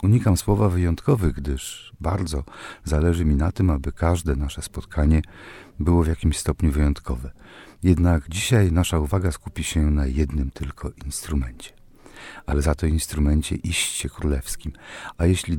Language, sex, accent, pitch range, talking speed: Polish, male, native, 75-95 Hz, 140 wpm